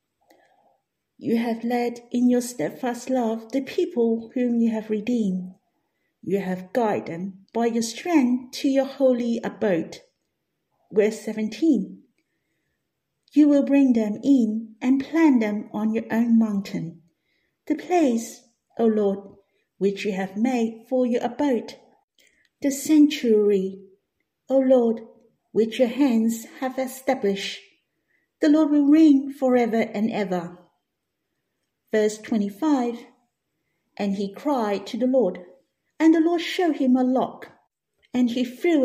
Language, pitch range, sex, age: Chinese, 215-265 Hz, female, 50-69